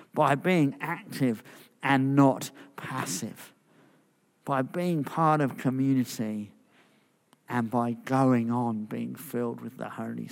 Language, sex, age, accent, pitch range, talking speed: English, male, 50-69, British, 125-155 Hz, 115 wpm